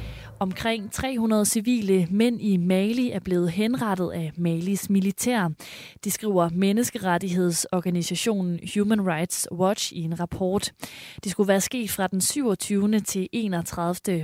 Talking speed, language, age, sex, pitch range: 125 wpm, Danish, 20-39, female, 175-215 Hz